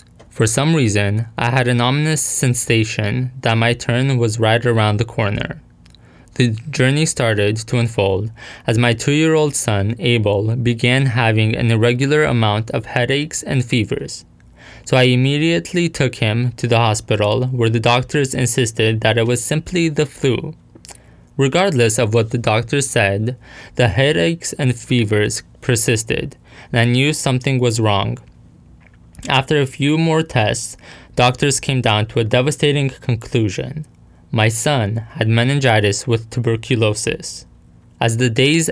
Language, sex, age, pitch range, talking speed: English, male, 20-39, 115-135 Hz, 140 wpm